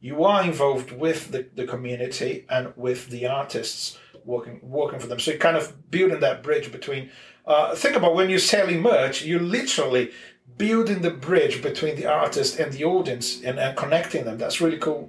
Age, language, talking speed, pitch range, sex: 40-59, English, 190 wpm, 130-165 Hz, male